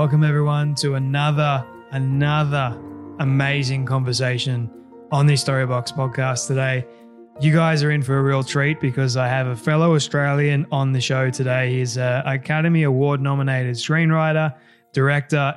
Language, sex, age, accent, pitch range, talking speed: English, male, 20-39, Australian, 135-150 Hz, 145 wpm